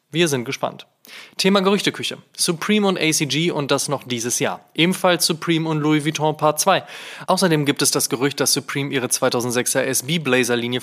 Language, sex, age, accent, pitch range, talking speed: German, male, 20-39, German, 125-160 Hz, 165 wpm